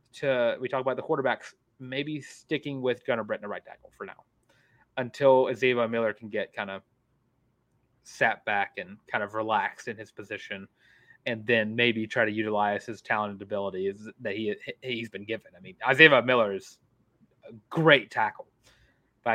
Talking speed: 170 wpm